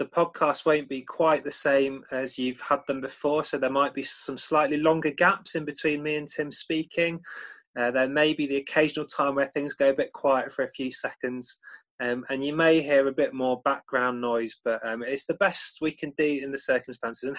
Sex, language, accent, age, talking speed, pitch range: male, English, British, 20-39, 225 wpm, 125-160 Hz